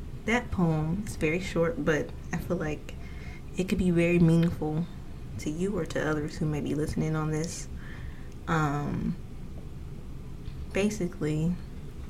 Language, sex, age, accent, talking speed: English, female, 20-39, American, 135 wpm